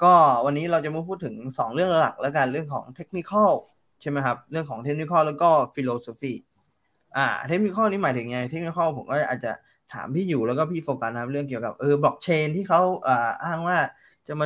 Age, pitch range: 20-39, 125-160 Hz